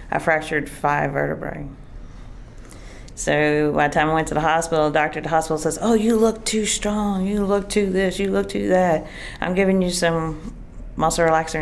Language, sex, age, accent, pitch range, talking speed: English, female, 40-59, American, 140-170 Hz, 195 wpm